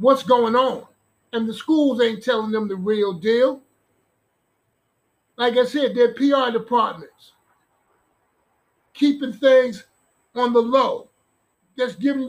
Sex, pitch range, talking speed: male, 230-270 Hz, 120 wpm